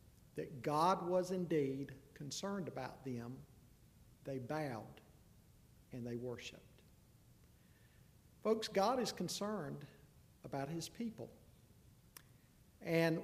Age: 50-69